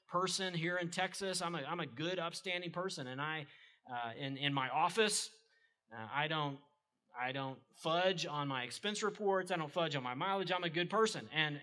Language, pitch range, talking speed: English, 150-205 Hz, 200 wpm